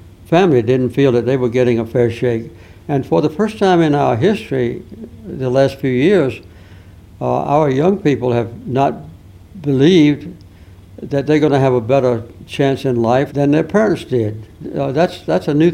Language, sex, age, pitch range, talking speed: English, male, 60-79, 115-135 Hz, 185 wpm